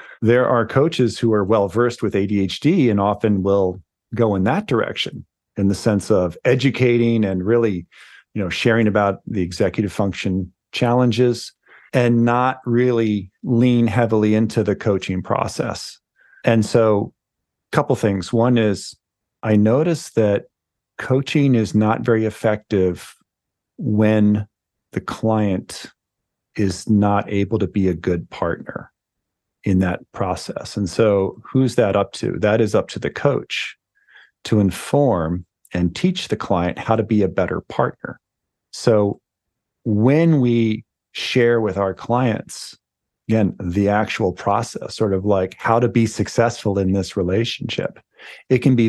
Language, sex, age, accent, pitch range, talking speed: English, male, 40-59, American, 100-120 Hz, 140 wpm